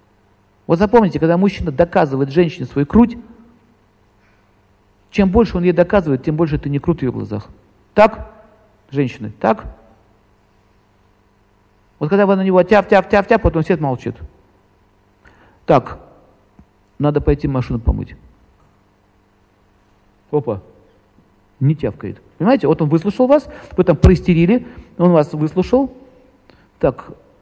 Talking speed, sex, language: 120 wpm, male, Russian